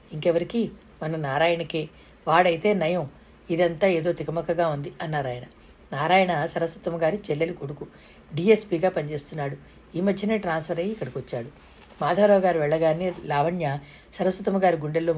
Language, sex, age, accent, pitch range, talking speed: Telugu, female, 60-79, native, 150-180 Hz, 115 wpm